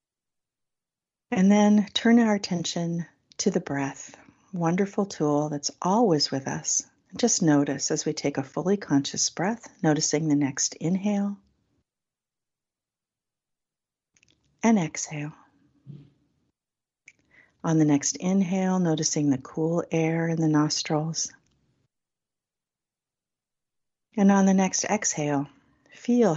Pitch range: 150-195 Hz